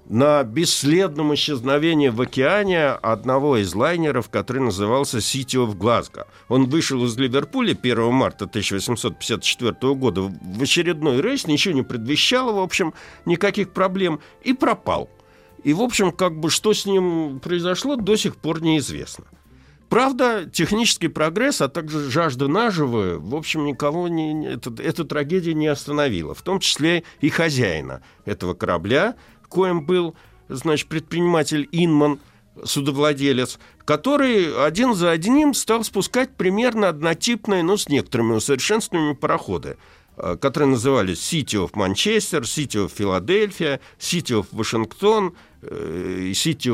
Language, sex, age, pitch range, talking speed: Russian, male, 60-79, 125-180 Hz, 130 wpm